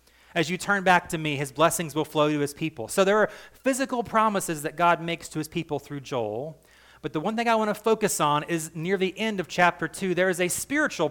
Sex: male